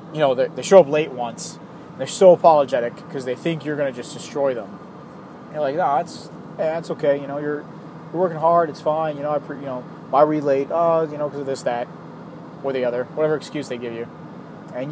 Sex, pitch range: male, 135-180 Hz